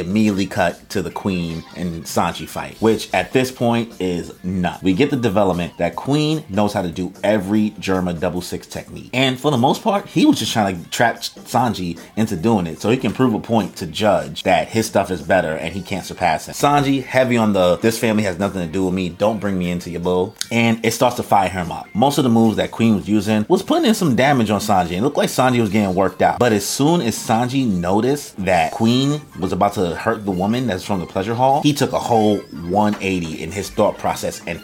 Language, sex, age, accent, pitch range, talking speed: English, male, 30-49, American, 90-120 Hz, 240 wpm